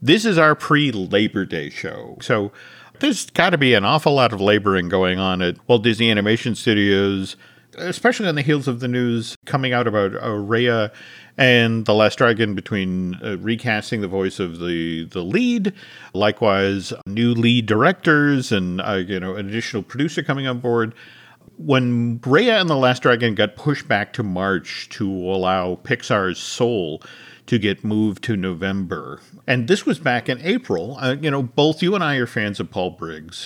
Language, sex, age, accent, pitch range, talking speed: English, male, 50-69, American, 100-145 Hz, 180 wpm